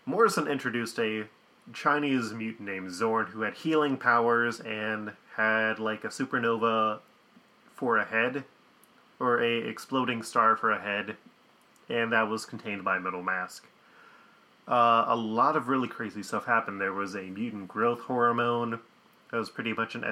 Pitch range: 105-120 Hz